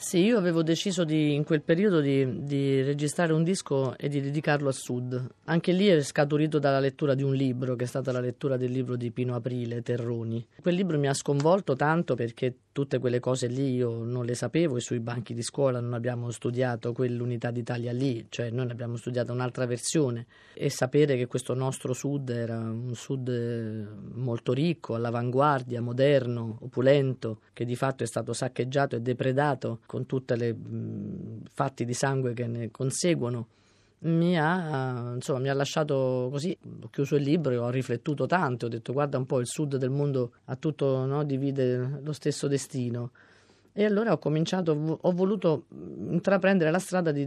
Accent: native